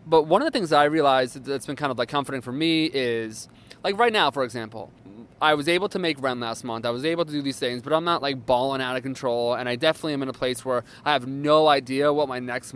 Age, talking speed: 20-39, 280 wpm